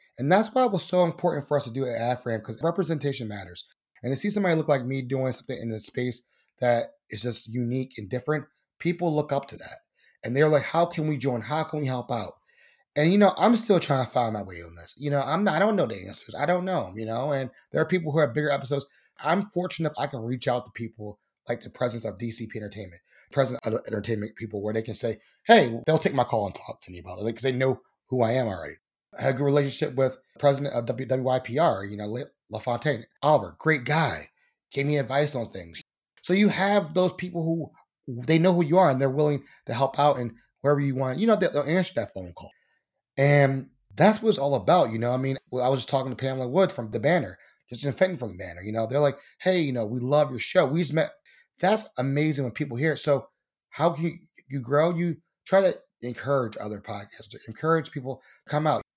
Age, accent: 30-49, American